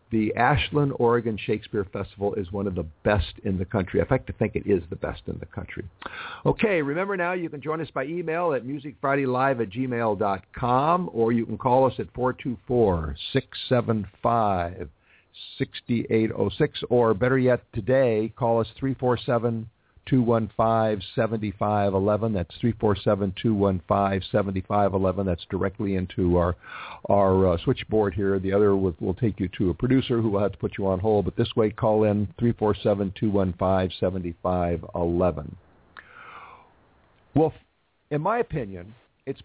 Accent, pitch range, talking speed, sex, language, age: American, 100-125 Hz, 170 wpm, male, English, 50-69